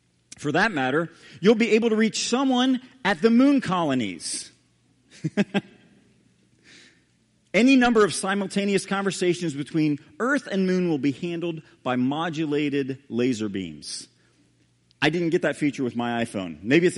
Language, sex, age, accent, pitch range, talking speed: English, male, 40-59, American, 130-195 Hz, 140 wpm